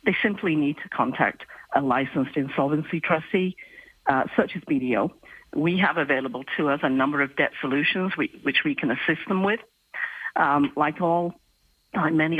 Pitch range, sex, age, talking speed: 140-175 Hz, female, 50-69, 160 wpm